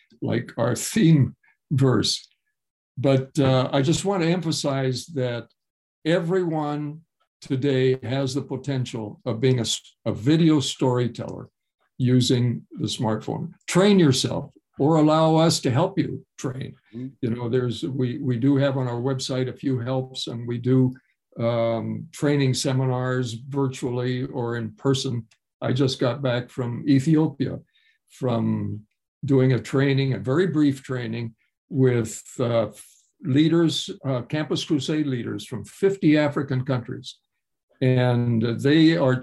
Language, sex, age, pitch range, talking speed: English, male, 60-79, 125-150 Hz, 130 wpm